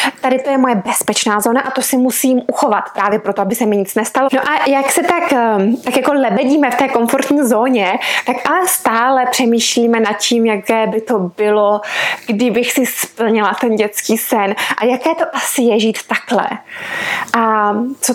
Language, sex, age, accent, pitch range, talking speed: Czech, female, 20-39, native, 215-265 Hz, 180 wpm